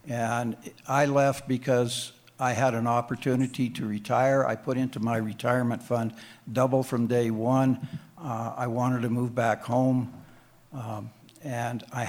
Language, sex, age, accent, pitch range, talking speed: English, male, 60-79, American, 115-130 Hz, 150 wpm